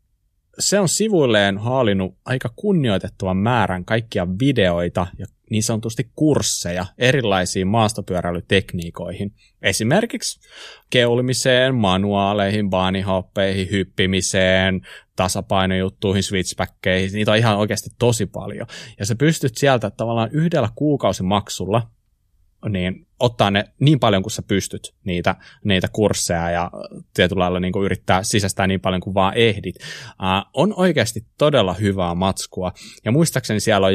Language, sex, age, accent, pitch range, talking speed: Finnish, male, 30-49, native, 95-115 Hz, 120 wpm